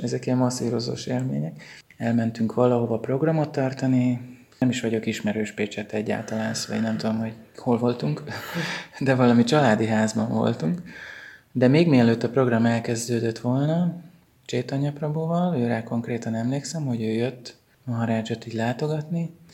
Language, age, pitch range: Hungarian, 20-39, 115-130 Hz